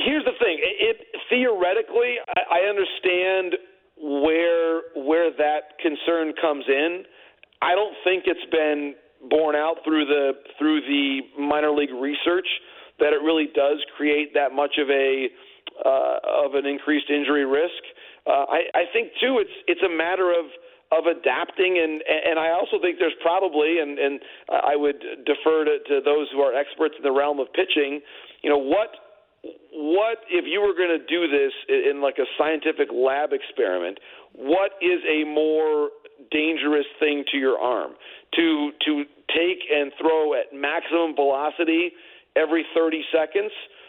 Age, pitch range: 40-59, 145-210 Hz